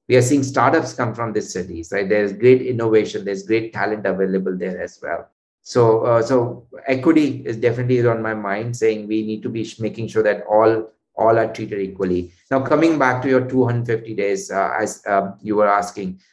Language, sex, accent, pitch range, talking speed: English, male, Indian, 105-125 Hz, 200 wpm